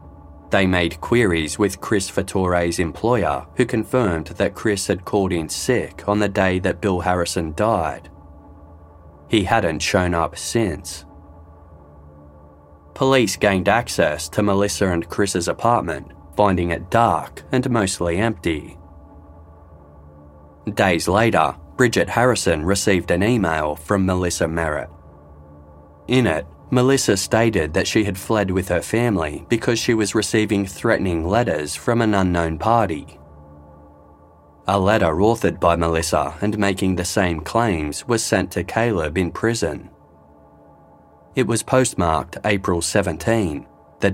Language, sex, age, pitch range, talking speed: English, male, 20-39, 75-105 Hz, 130 wpm